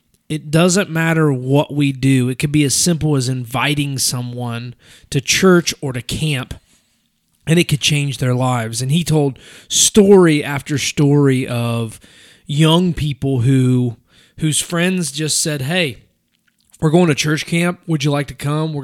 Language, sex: English, male